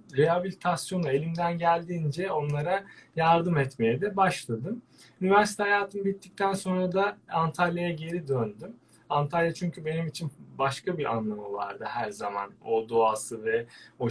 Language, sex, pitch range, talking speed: Turkish, male, 135-190 Hz, 130 wpm